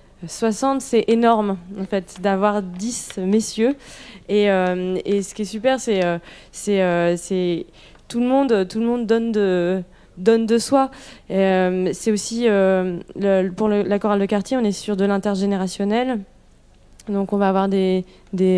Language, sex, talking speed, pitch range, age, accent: French, female, 175 wpm, 190-230 Hz, 20-39, French